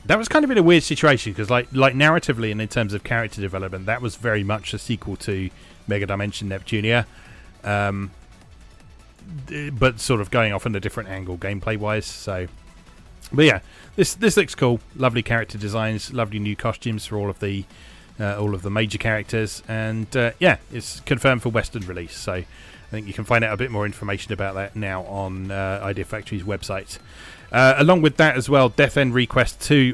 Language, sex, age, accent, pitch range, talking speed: English, male, 30-49, British, 100-125 Hz, 200 wpm